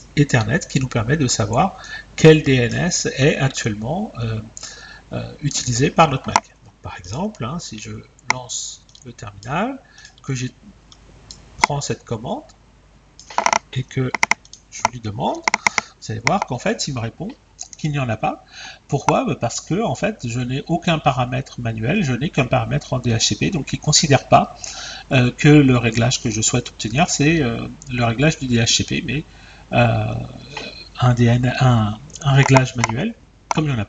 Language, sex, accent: French, male, French